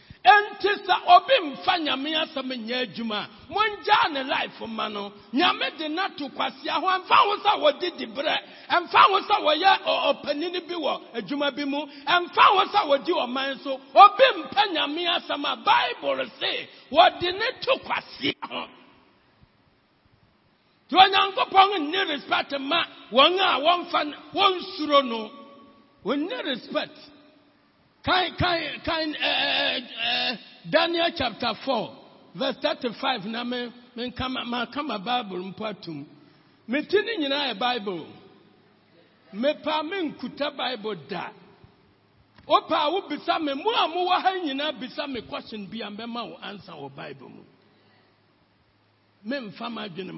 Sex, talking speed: male, 120 wpm